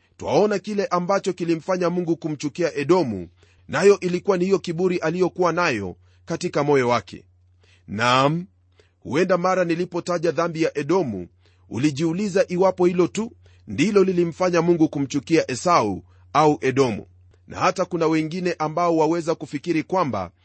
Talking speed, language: 130 wpm, Swahili